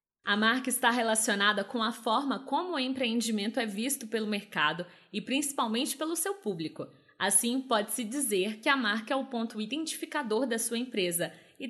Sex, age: female, 20-39